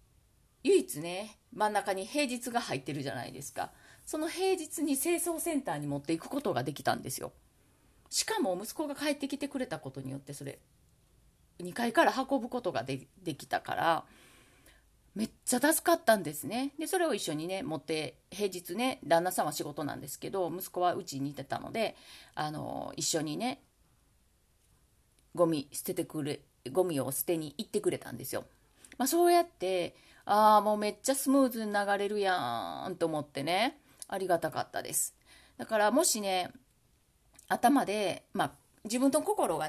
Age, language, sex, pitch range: 30-49, Japanese, female, 165-275 Hz